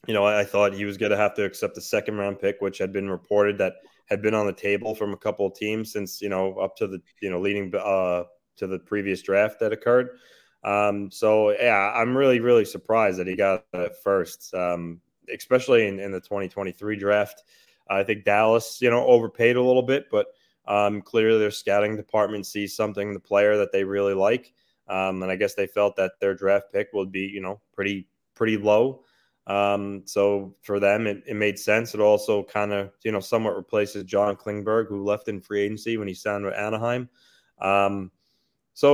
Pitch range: 100-115 Hz